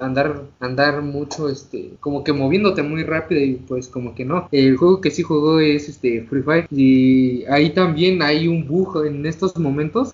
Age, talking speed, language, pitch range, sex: 20-39, 190 wpm, Spanish, 135-170 Hz, male